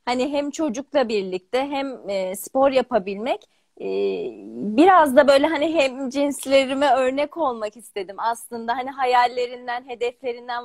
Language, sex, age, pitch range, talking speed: Turkish, female, 30-49, 225-280 Hz, 115 wpm